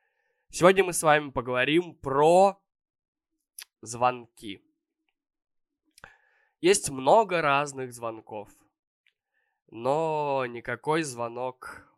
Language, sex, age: Russian, male, 20-39